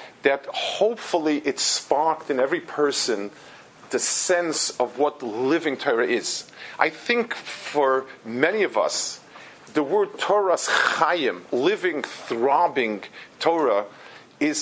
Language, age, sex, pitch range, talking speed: English, 50-69, male, 130-180 Hz, 115 wpm